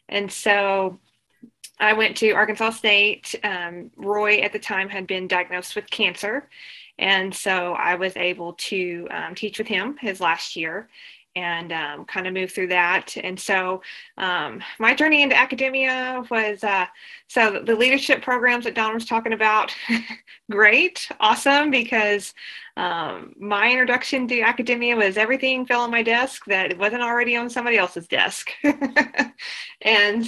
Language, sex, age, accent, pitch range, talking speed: English, female, 20-39, American, 190-230 Hz, 155 wpm